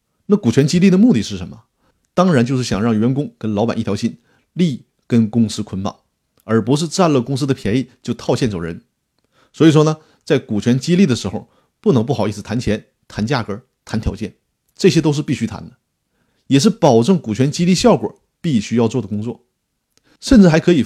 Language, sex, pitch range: Chinese, male, 115-155 Hz